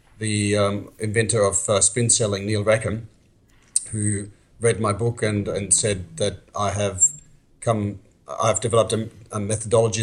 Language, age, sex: English, 40-59, male